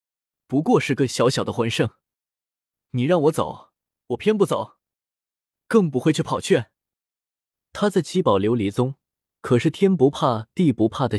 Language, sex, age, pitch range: Chinese, male, 20-39, 105-165 Hz